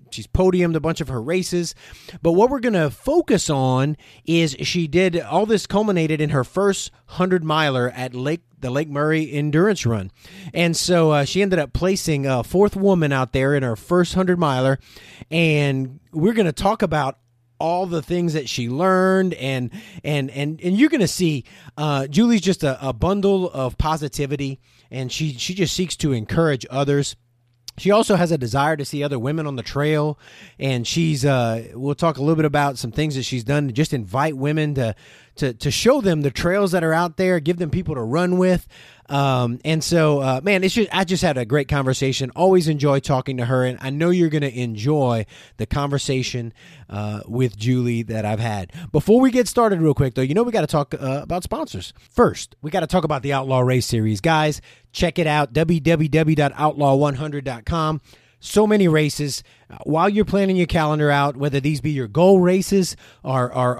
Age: 30-49